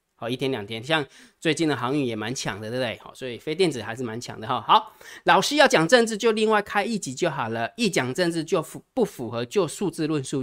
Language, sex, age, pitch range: Chinese, male, 20-39, 130-190 Hz